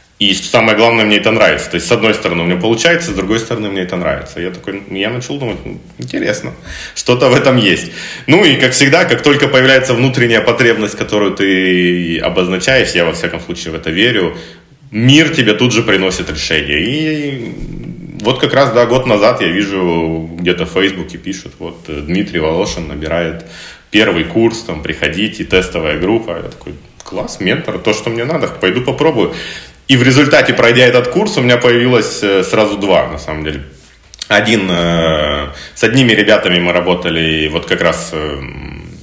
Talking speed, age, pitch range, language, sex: 170 wpm, 30-49, 85-120 Hz, Russian, male